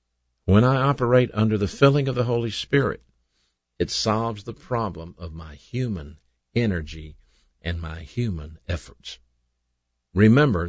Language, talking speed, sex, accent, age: English, 130 wpm, male, American, 50-69